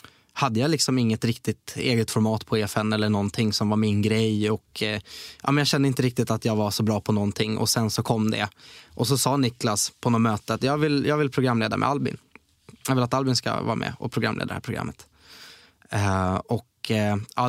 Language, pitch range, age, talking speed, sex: Swedish, 110-130 Hz, 20-39, 215 wpm, male